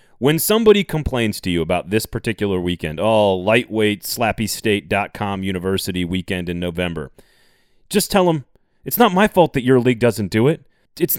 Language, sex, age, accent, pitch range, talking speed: English, male, 30-49, American, 105-160 Hz, 165 wpm